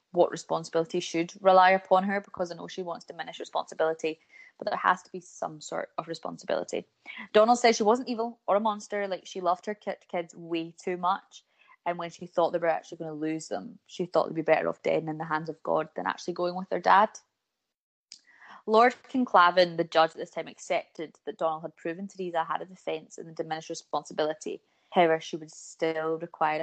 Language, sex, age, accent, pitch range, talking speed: English, female, 20-39, British, 160-190 Hz, 210 wpm